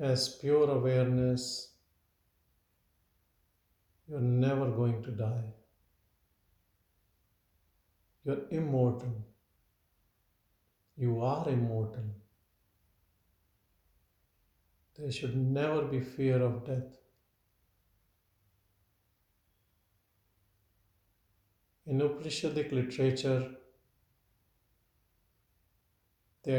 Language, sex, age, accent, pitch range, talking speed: English, male, 50-69, Indian, 90-130 Hz, 60 wpm